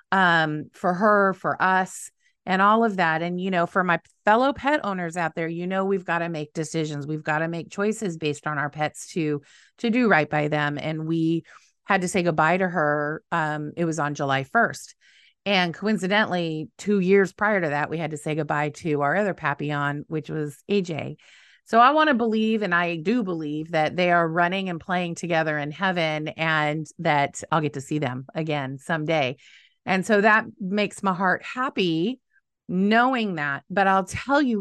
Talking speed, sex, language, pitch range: 200 wpm, female, English, 155-215 Hz